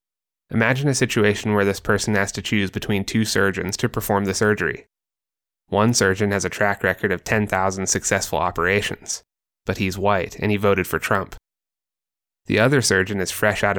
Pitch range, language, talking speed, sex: 100-115 Hz, English, 175 wpm, male